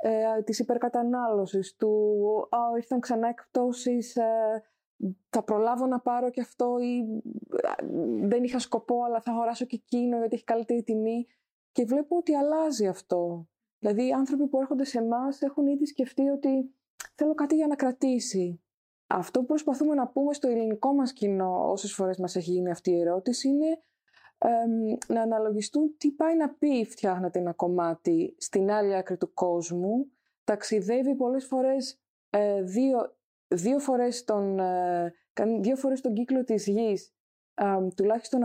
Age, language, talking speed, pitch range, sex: 20-39, Greek, 145 wpm, 210-260 Hz, female